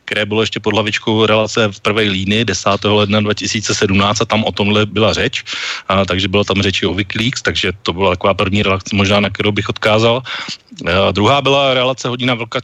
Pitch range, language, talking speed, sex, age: 100-120 Hz, Slovak, 200 wpm, male, 30-49